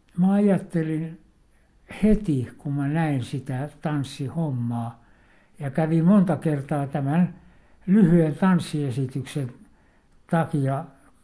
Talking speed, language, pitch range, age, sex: 85 wpm, Finnish, 140-180 Hz, 60-79, male